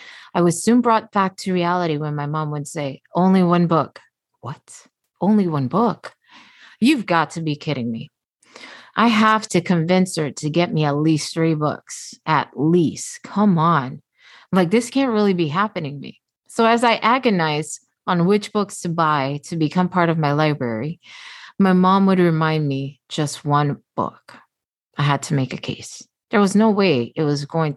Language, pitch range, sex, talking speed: English, 150-195 Hz, female, 185 wpm